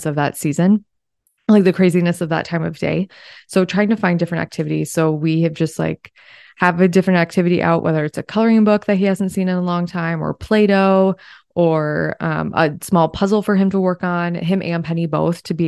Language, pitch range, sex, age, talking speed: English, 155-180 Hz, female, 20-39, 220 wpm